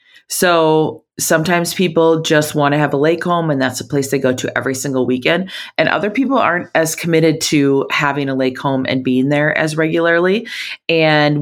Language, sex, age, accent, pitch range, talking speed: English, female, 30-49, American, 130-165 Hz, 195 wpm